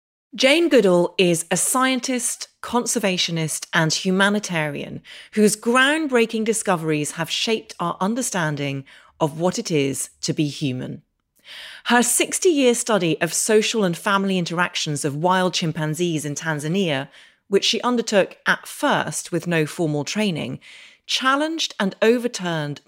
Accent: British